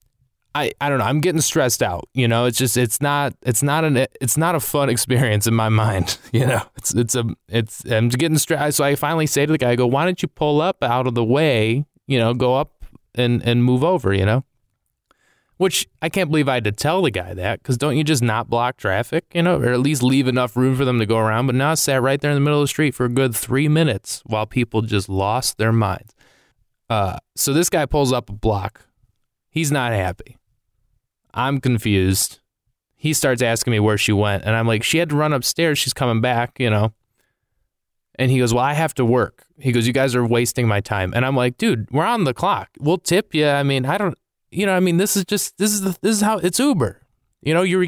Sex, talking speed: male, 250 wpm